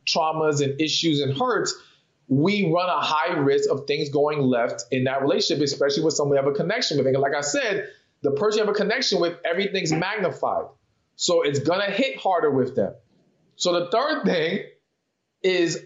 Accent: American